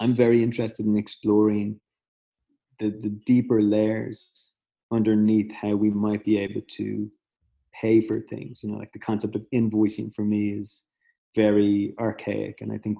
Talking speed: 155 wpm